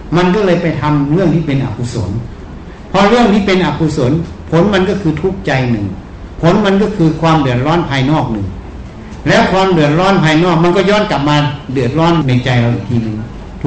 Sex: male